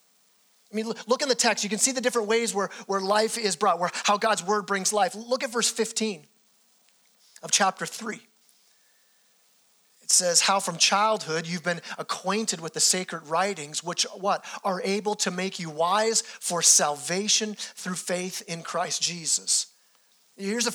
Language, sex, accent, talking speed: English, male, American, 170 wpm